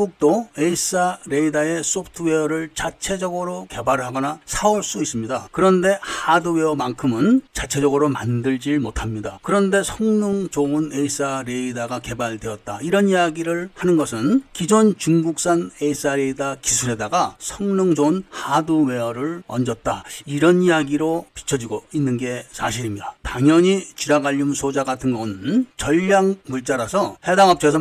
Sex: male